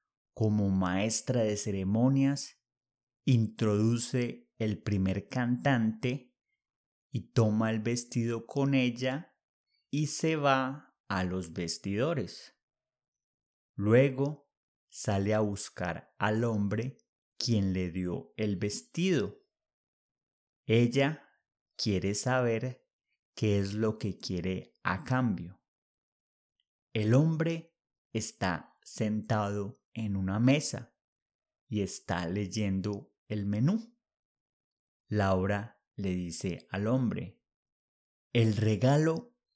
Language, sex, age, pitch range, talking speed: English, male, 30-49, 100-130 Hz, 90 wpm